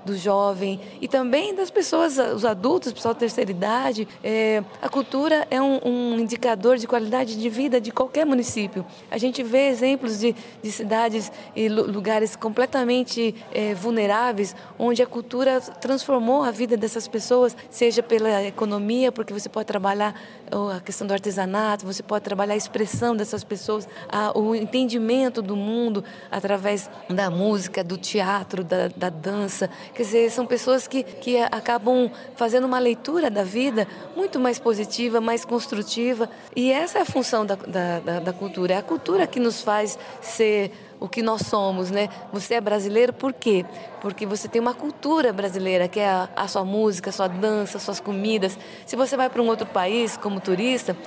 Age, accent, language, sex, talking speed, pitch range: 20-39, Brazilian, Portuguese, female, 170 wpm, 205-250 Hz